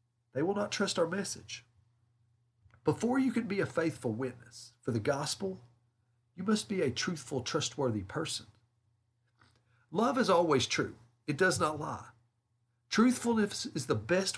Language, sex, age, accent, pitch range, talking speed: English, male, 40-59, American, 115-160 Hz, 145 wpm